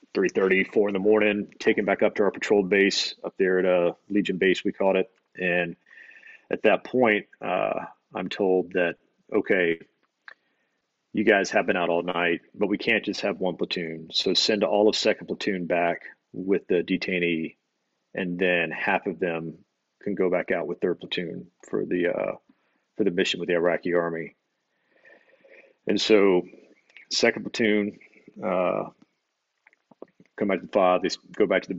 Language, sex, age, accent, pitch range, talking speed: English, male, 40-59, American, 85-105 Hz, 175 wpm